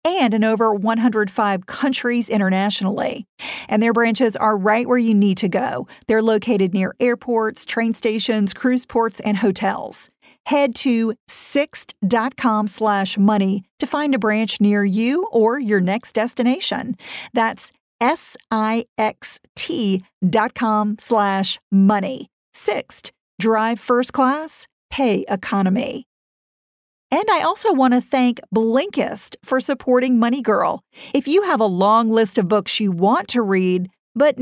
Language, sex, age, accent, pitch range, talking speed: English, female, 50-69, American, 210-255 Hz, 125 wpm